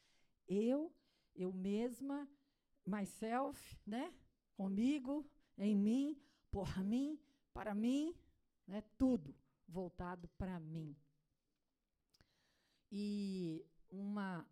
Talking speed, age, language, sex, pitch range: 80 wpm, 50-69, Portuguese, female, 190-255 Hz